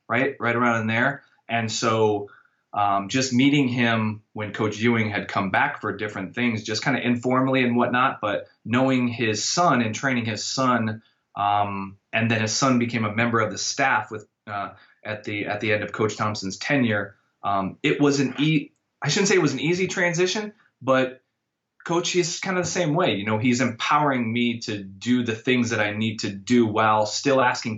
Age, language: 20-39, English